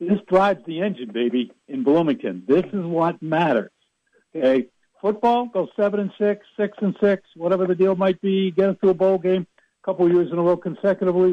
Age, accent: 60-79, American